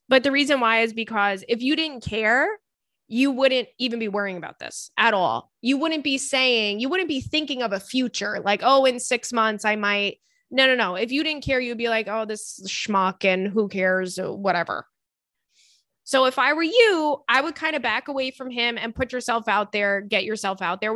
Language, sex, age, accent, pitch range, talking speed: English, female, 20-39, American, 220-275 Hz, 220 wpm